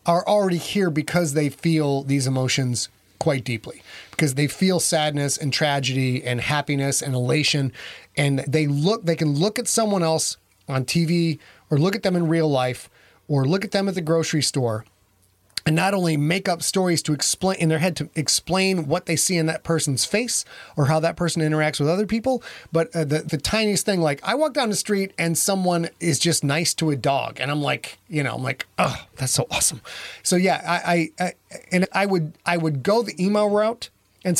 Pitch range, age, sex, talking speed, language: 145-195 Hz, 30-49, male, 210 wpm, English